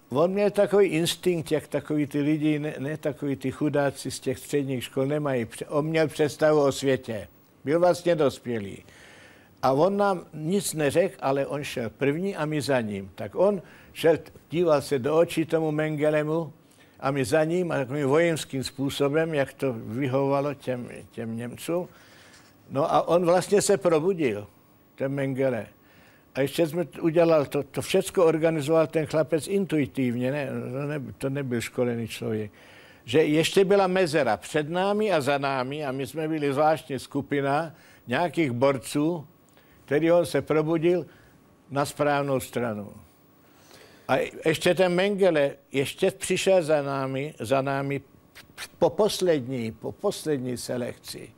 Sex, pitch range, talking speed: male, 135-165 Hz, 145 wpm